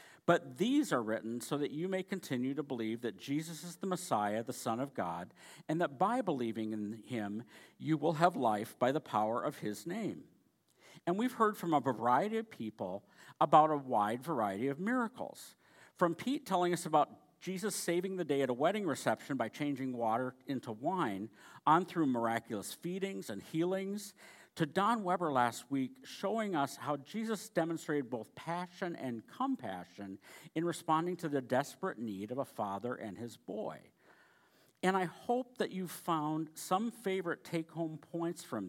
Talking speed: 170 wpm